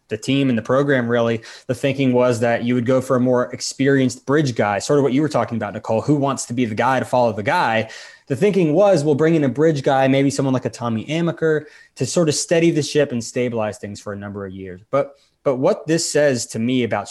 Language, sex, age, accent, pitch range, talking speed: English, male, 20-39, American, 115-135 Hz, 260 wpm